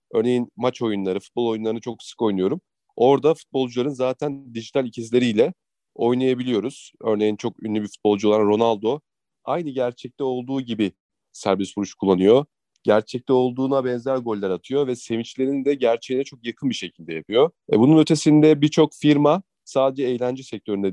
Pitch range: 115-140 Hz